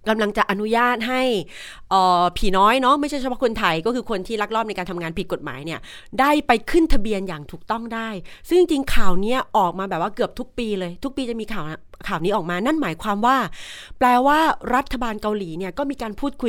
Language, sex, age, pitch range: Thai, female, 30-49, 195-270 Hz